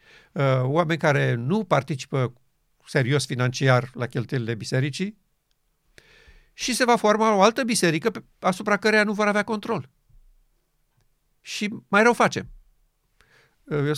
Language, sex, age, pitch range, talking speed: Romanian, male, 50-69, 140-205 Hz, 115 wpm